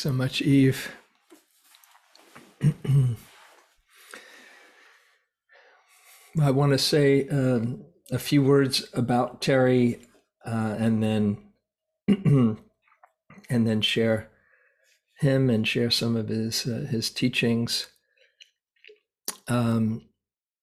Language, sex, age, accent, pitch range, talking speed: English, male, 50-69, American, 115-135 Hz, 85 wpm